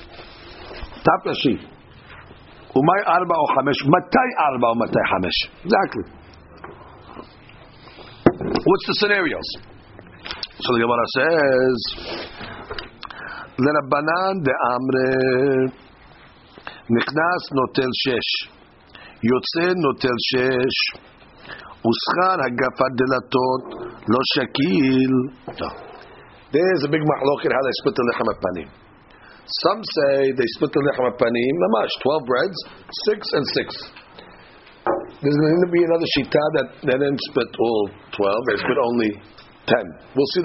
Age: 60-79